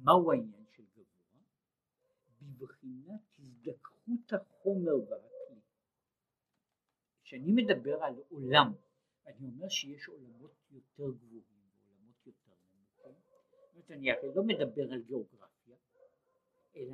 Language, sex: Hebrew, male